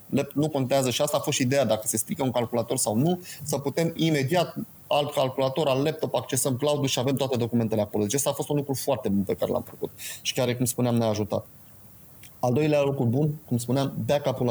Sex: male